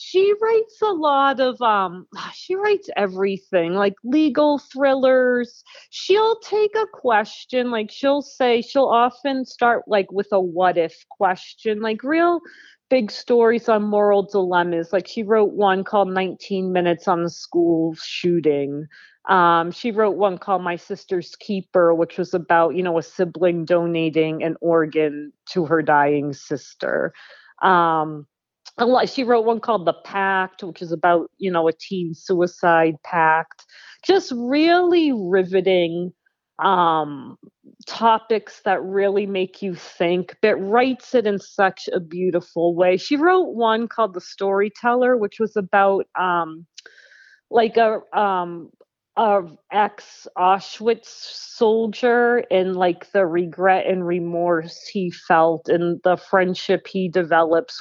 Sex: female